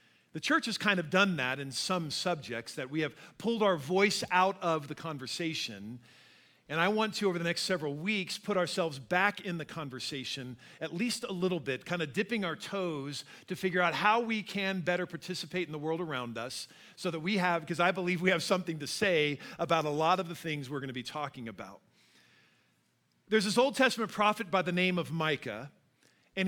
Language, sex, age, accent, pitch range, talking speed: English, male, 40-59, American, 145-200 Hz, 210 wpm